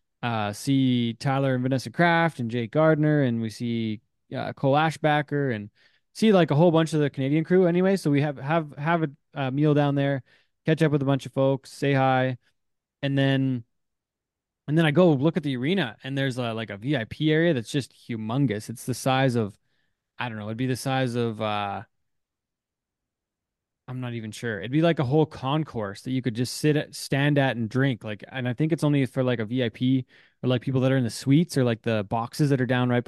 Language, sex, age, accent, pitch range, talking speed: English, male, 20-39, American, 120-155 Hz, 225 wpm